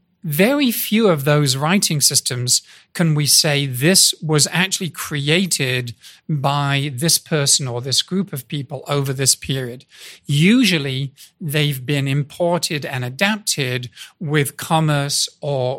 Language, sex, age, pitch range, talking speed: English, male, 40-59, 135-170 Hz, 125 wpm